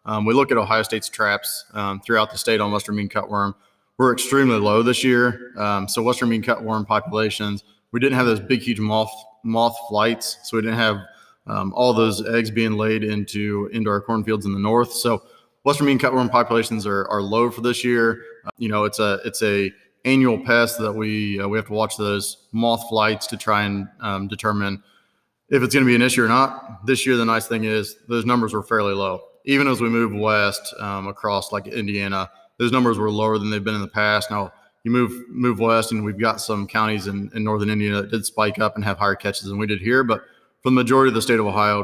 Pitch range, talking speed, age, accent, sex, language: 105-115 Hz, 230 wpm, 20-39, American, male, English